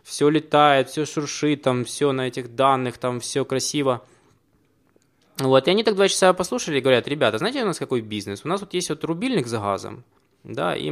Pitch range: 115-165 Hz